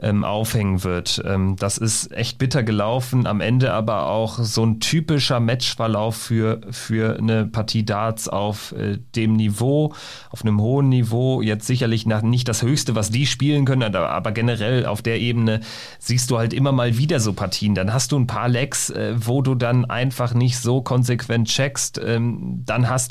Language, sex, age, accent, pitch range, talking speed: German, male, 40-59, German, 110-130 Hz, 170 wpm